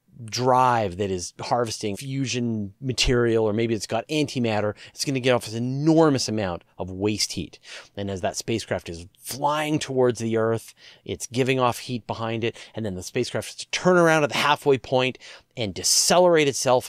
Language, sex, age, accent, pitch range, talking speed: English, male, 30-49, American, 105-140 Hz, 185 wpm